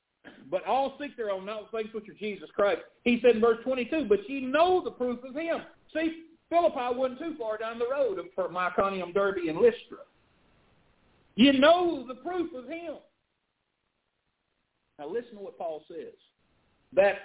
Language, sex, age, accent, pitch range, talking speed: English, male, 50-69, American, 205-305 Hz, 175 wpm